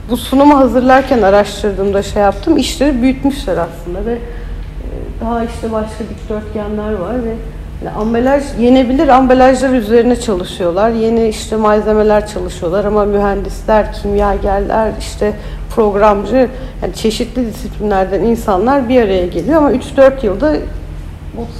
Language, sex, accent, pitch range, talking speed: Turkish, female, native, 185-245 Hz, 115 wpm